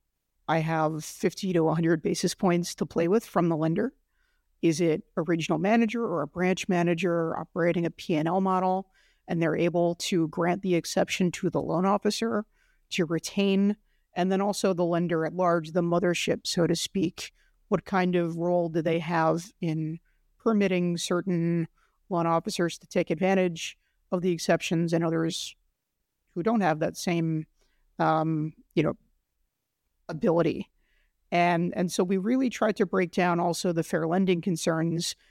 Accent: American